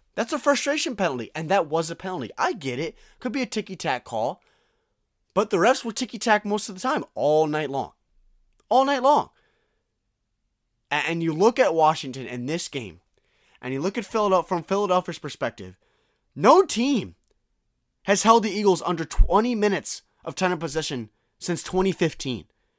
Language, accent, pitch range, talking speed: English, American, 130-210 Hz, 165 wpm